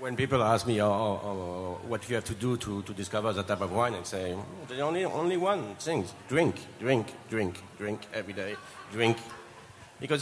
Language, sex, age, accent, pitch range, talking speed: English, male, 50-69, French, 105-130 Hz, 205 wpm